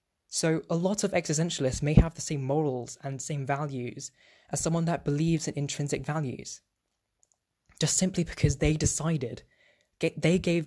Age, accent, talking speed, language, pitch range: 10-29, British, 150 wpm, English, 125-170 Hz